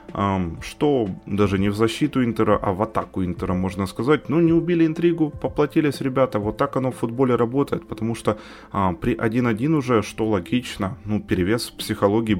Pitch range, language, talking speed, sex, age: 95-115 Hz, Ukrainian, 175 wpm, male, 20-39